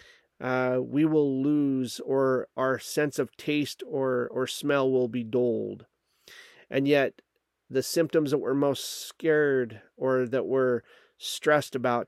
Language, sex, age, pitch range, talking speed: English, male, 40-59, 125-140 Hz, 135 wpm